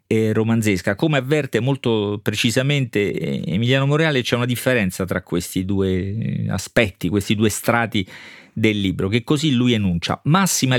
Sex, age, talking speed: male, 40-59, 135 wpm